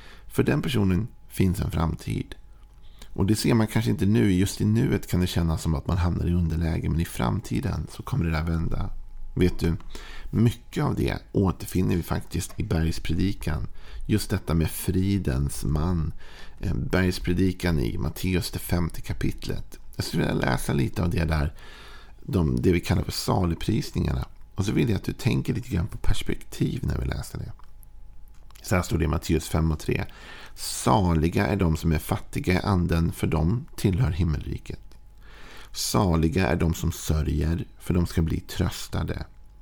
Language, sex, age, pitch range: Swedish, male, 50-69, 80-100 Hz